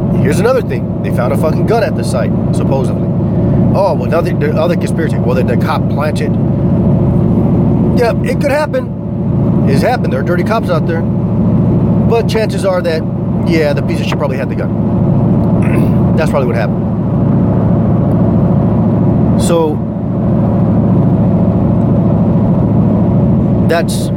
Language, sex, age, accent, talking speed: English, male, 30-49, American, 130 wpm